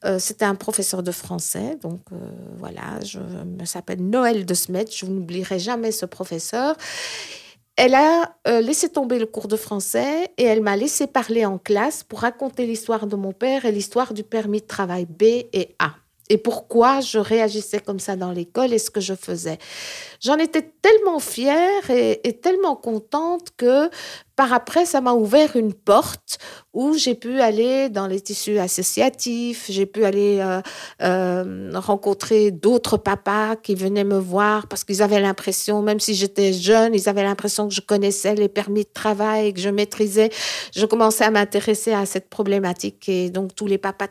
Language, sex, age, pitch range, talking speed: French, female, 50-69, 195-240 Hz, 180 wpm